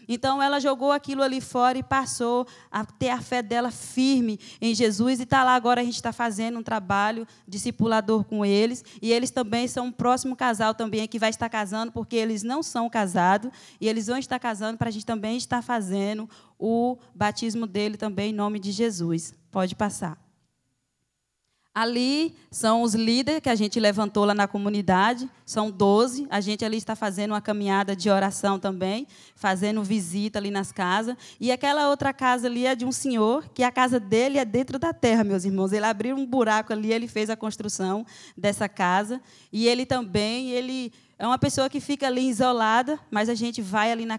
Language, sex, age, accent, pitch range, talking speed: Portuguese, female, 20-39, Brazilian, 210-250 Hz, 195 wpm